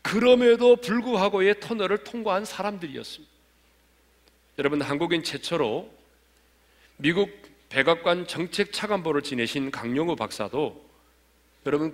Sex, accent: male, native